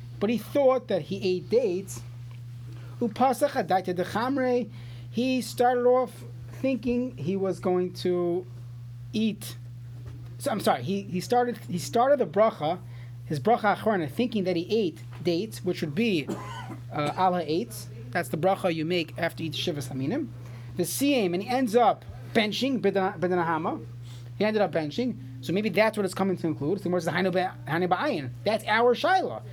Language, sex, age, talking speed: English, male, 30-49, 145 wpm